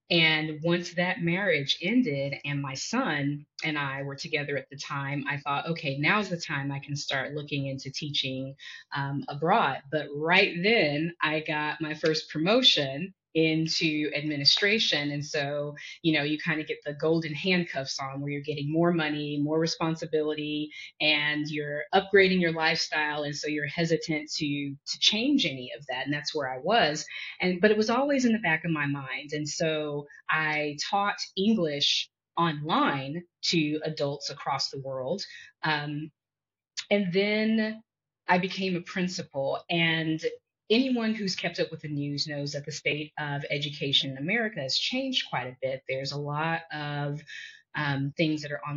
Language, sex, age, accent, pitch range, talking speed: English, female, 30-49, American, 145-170 Hz, 170 wpm